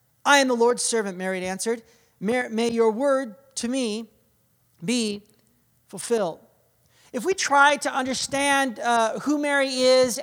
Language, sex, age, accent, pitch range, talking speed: English, male, 40-59, American, 230-270 Hz, 135 wpm